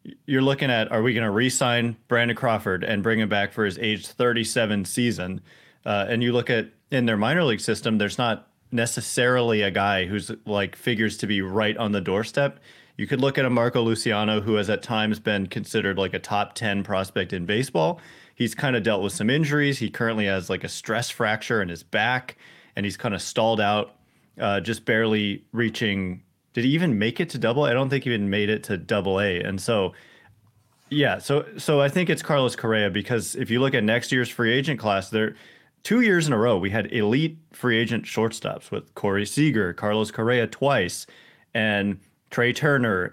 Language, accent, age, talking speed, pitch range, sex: English, American, 30-49, 205 wpm, 105-130 Hz, male